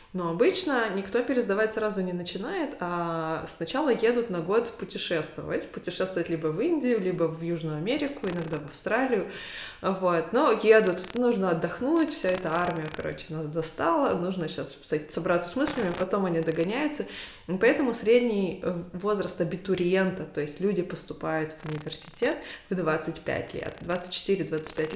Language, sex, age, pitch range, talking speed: Russian, female, 20-39, 165-200 Hz, 130 wpm